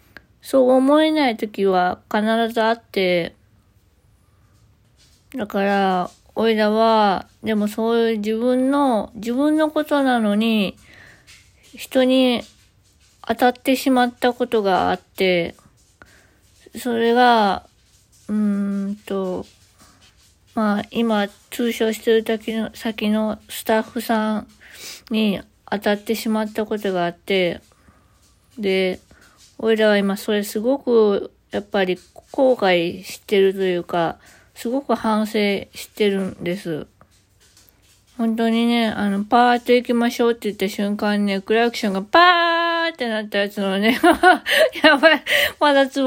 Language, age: Japanese, 20-39